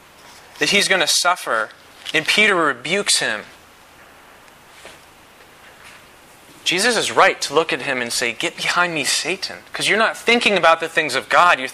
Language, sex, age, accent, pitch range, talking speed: English, male, 30-49, American, 140-195 Hz, 165 wpm